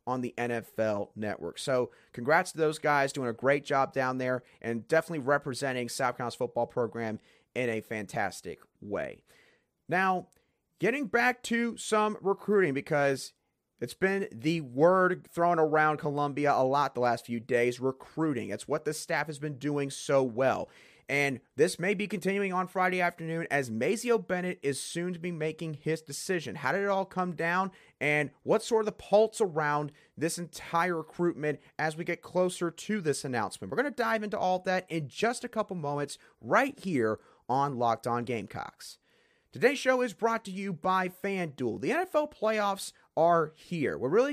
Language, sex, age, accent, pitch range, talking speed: English, male, 30-49, American, 140-195 Hz, 175 wpm